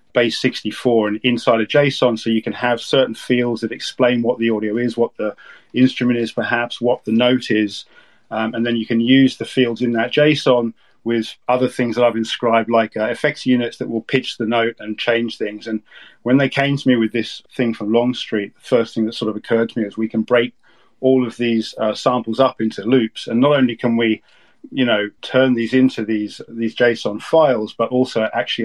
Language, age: English, 40-59